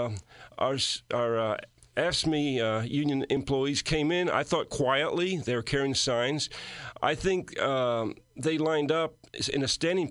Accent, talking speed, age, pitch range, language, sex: American, 155 wpm, 50-69, 130-155 Hz, English, male